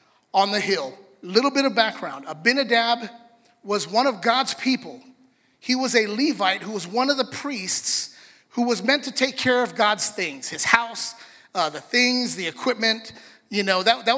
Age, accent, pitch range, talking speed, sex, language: 30-49, American, 200-250 Hz, 180 wpm, male, English